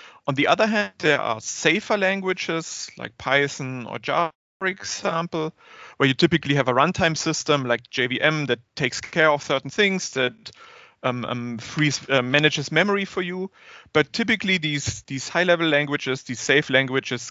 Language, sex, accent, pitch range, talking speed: English, male, German, 130-175 Hz, 165 wpm